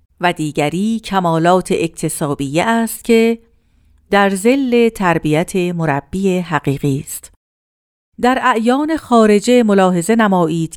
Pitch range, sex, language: 160-225 Hz, female, Persian